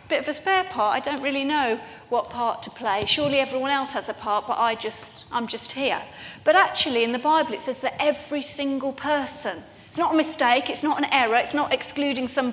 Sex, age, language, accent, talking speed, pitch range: female, 40-59, English, British, 220 wpm, 230-290 Hz